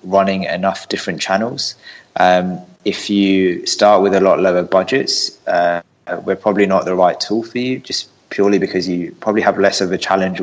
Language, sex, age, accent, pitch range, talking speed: English, male, 20-39, British, 90-95 Hz, 185 wpm